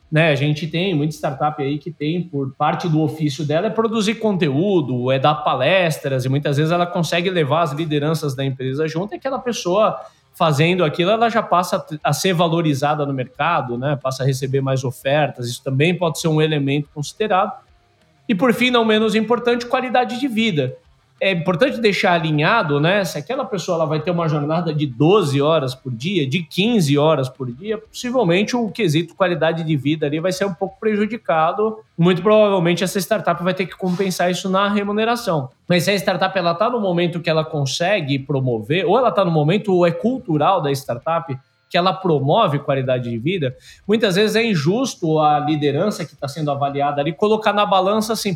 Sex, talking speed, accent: male, 190 wpm, Brazilian